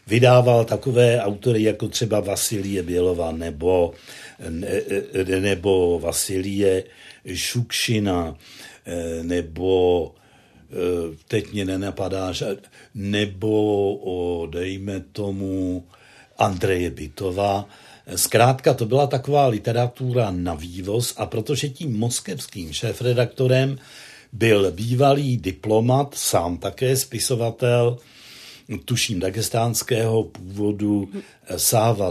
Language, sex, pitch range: Czech, male, 100-130 Hz